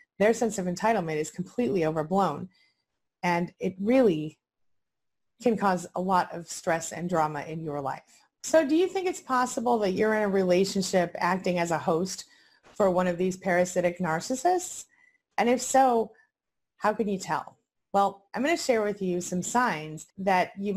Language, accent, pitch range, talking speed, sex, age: English, American, 175-245 Hz, 175 wpm, female, 30-49